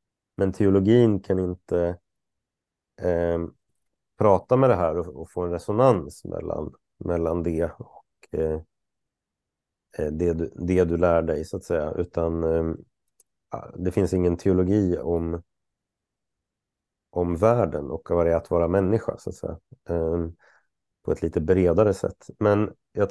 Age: 30-49